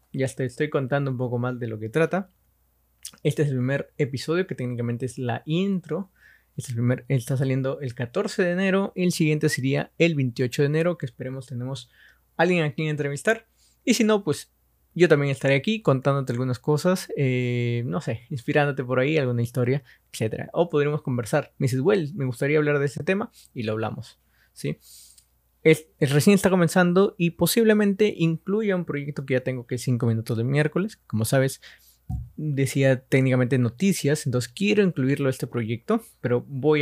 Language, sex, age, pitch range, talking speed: Spanish, male, 20-39, 125-160 Hz, 185 wpm